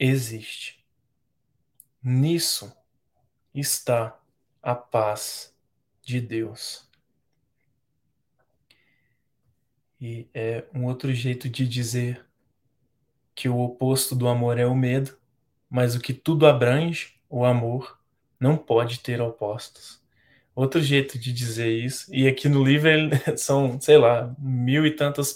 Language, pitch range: Portuguese, 120-135 Hz